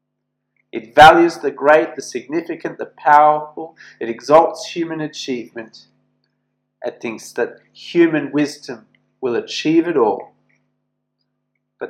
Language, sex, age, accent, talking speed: English, male, 40-59, Australian, 110 wpm